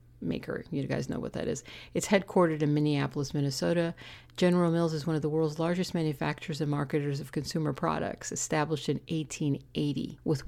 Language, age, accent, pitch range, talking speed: English, 50-69, American, 145-175 Hz, 170 wpm